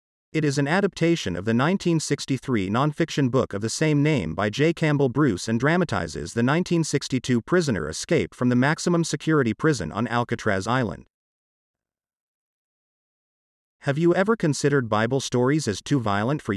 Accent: American